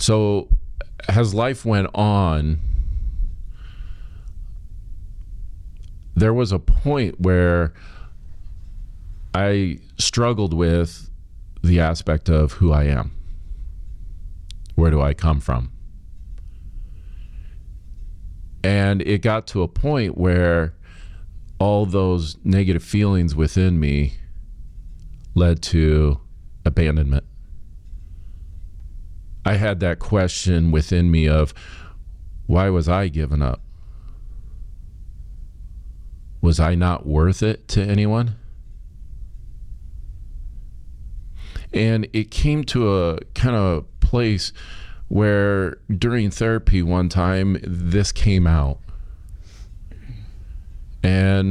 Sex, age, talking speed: male, 40-59, 90 wpm